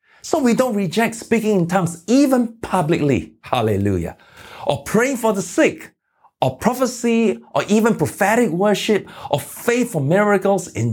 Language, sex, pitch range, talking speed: English, male, 120-190 Hz, 145 wpm